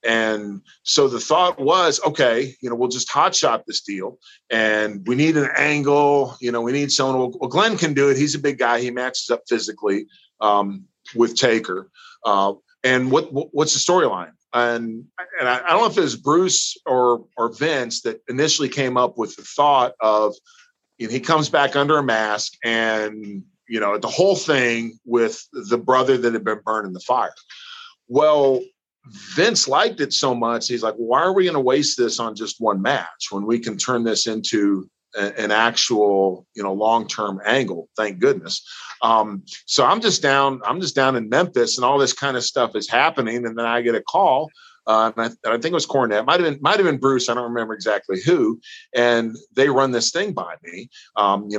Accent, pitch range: American, 110-140 Hz